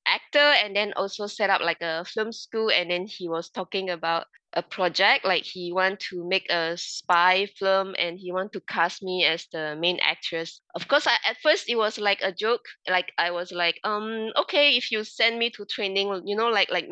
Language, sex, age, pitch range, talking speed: English, female, 20-39, 180-220 Hz, 220 wpm